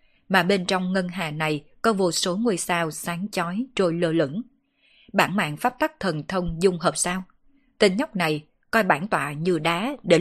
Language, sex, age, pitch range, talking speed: Vietnamese, female, 20-39, 165-210 Hz, 200 wpm